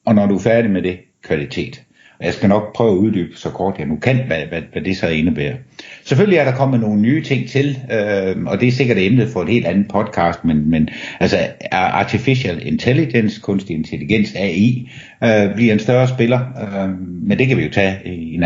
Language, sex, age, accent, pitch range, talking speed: Danish, male, 60-79, native, 95-130 Hz, 215 wpm